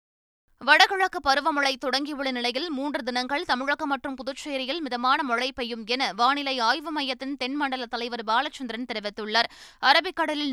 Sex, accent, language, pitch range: female, native, Tamil, 245-295 Hz